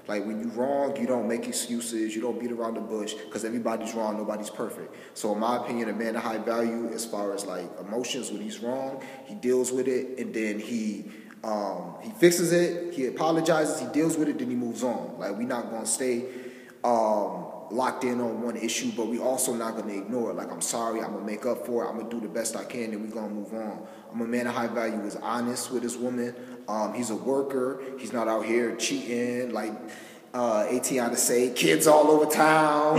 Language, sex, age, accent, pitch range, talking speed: English, male, 30-49, American, 115-140 Hz, 240 wpm